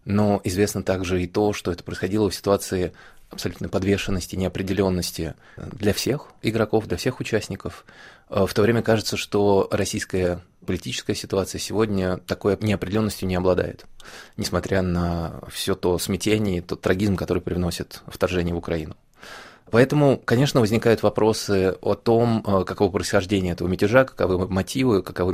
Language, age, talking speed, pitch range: Russian, 20-39, 135 wpm, 95-110 Hz